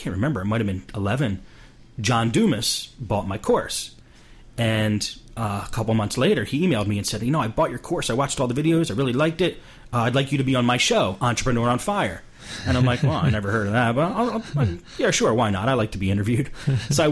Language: English